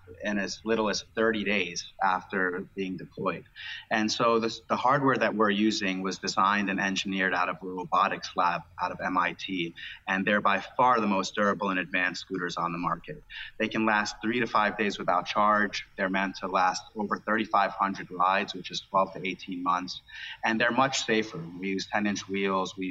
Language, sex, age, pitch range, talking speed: English, male, 30-49, 95-110 Hz, 190 wpm